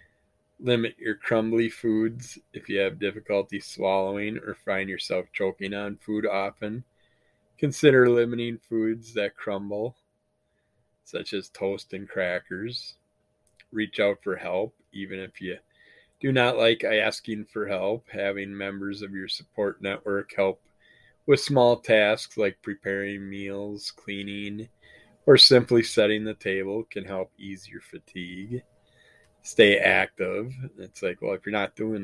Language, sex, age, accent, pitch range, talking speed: English, male, 20-39, American, 95-115 Hz, 135 wpm